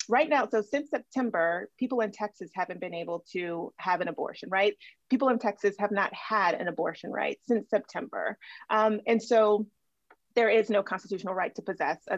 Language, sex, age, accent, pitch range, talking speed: English, female, 30-49, American, 190-230 Hz, 180 wpm